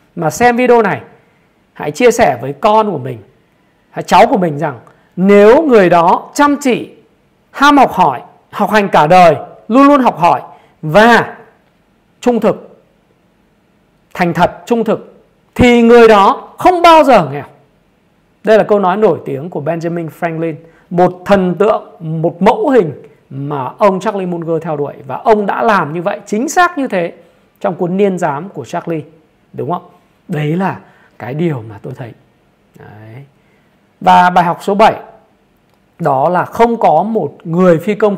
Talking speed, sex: 165 wpm, male